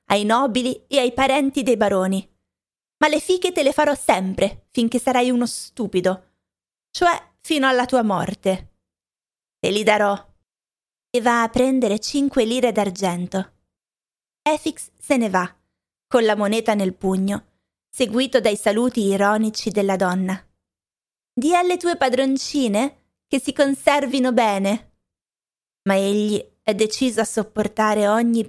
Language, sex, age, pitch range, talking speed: Italian, female, 20-39, 195-250 Hz, 135 wpm